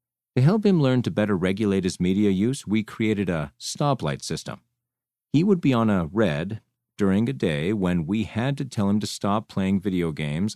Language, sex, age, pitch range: English, male, 40-59, 95-130 Hz